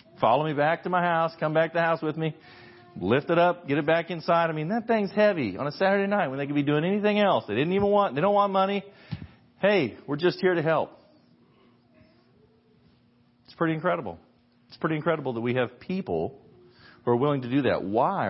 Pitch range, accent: 115-155 Hz, American